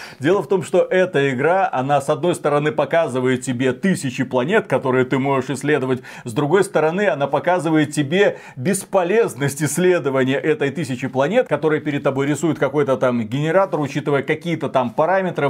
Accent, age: native, 30-49